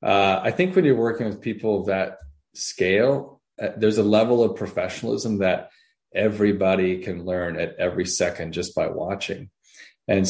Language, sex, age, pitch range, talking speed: English, male, 30-49, 95-110 Hz, 155 wpm